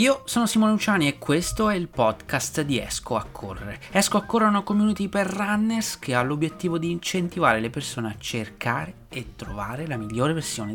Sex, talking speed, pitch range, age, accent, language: male, 195 wpm, 120-175 Hz, 30-49, native, Italian